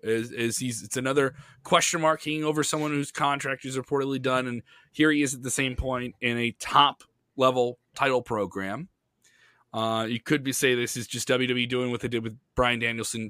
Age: 20-39